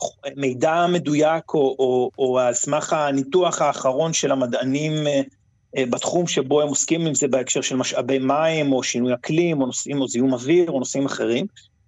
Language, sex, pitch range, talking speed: Hebrew, male, 130-170 Hz, 150 wpm